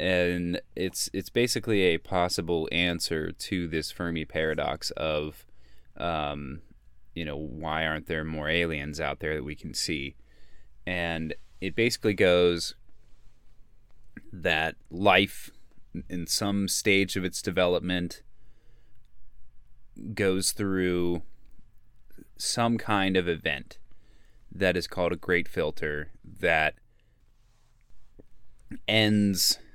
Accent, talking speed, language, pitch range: American, 105 wpm, English, 80-95 Hz